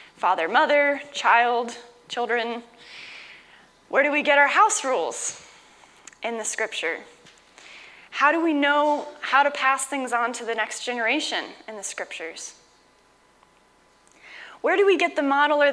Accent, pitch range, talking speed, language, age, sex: American, 235-295 Hz, 140 wpm, English, 10-29, female